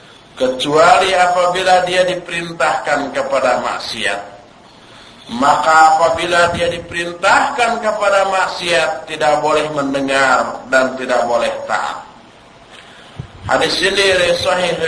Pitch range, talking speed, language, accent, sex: 145-235 Hz, 90 wpm, Indonesian, native, male